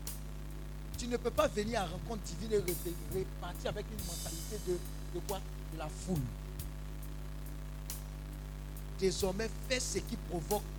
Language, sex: French, male